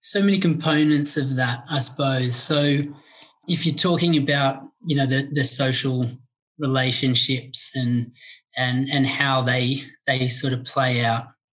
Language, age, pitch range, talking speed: English, 20-39, 135-155 Hz, 145 wpm